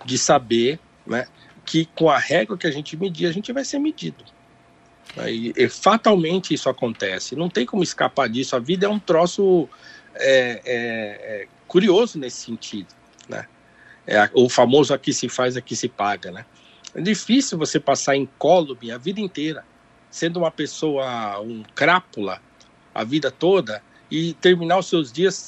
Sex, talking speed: male, 165 wpm